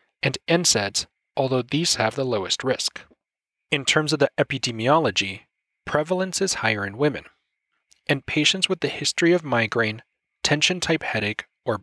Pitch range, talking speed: 115-165 Hz, 140 wpm